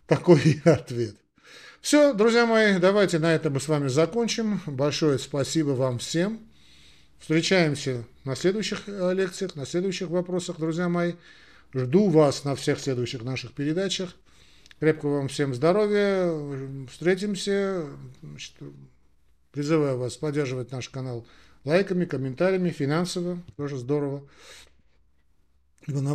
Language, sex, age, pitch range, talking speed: Russian, male, 50-69, 125-170 Hz, 110 wpm